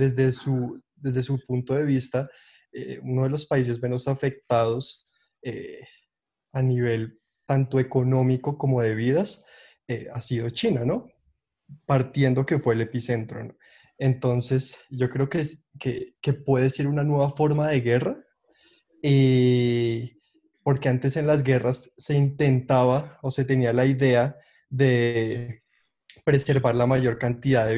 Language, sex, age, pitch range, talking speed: Spanish, male, 20-39, 120-140 Hz, 140 wpm